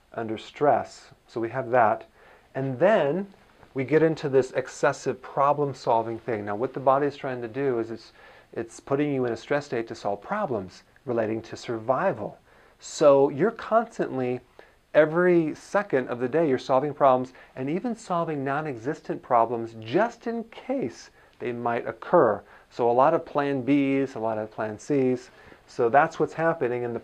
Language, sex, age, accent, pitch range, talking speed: English, male, 40-59, American, 120-155 Hz, 175 wpm